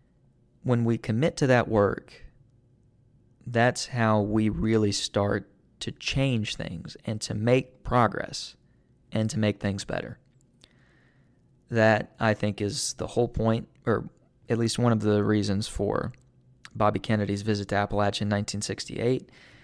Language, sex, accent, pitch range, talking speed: English, male, American, 105-125 Hz, 140 wpm